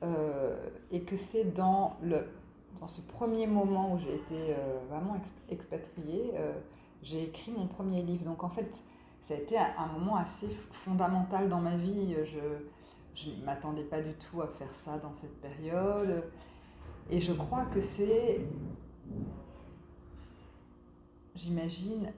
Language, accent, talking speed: French, French, 145 wpm